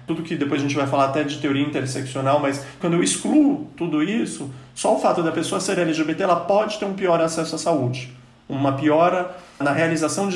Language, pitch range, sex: Portuguese, 135-175 Hz, male